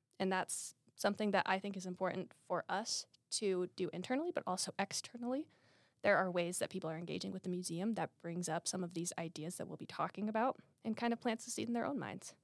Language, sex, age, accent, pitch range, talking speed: English, female, 20-39, American, 175-210 Hz, 230 wpm